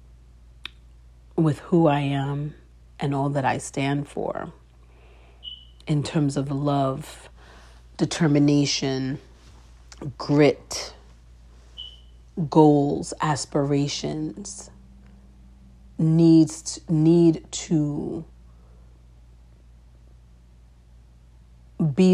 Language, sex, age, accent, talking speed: English, female, 40-59, American, 60 wpm